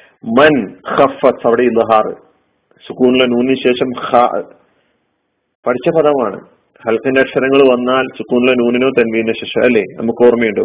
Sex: male